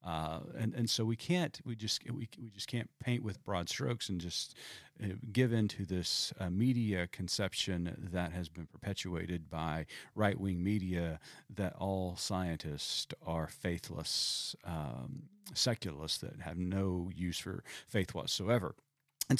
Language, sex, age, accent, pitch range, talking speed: English, male, 40-59, American, 85-115 Hz, 150 wpm